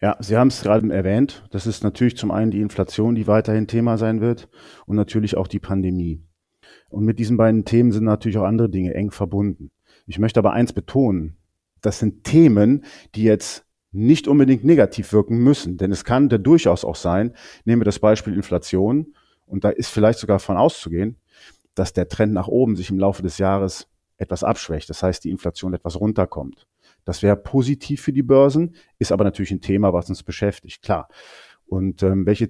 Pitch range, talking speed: 95-115 Hz, 190 wpm